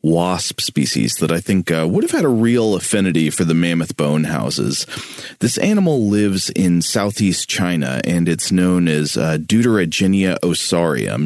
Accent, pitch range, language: American, 80-100 Hz, English